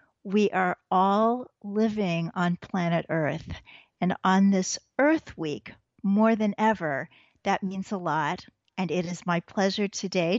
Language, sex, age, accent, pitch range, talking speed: English, female, 50-69, American, 180-220 Hz, 145 wpm